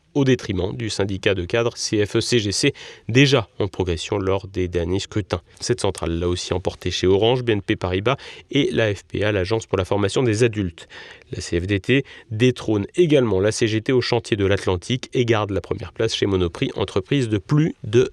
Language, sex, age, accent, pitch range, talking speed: French, male, 30-49, French, 95-125 Hz, 175 wpm